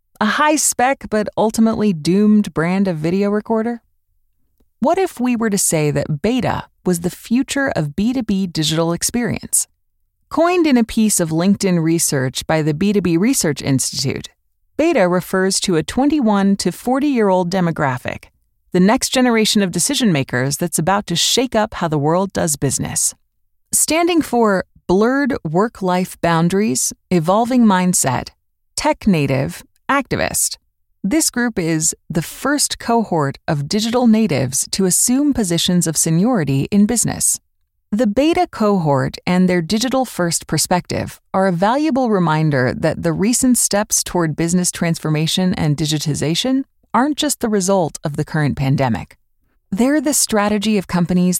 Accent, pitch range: American, 165-235 Hz